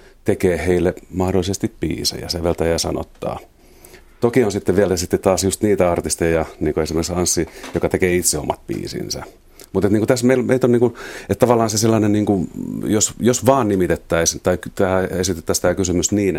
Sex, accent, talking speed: male, native, 165 wpm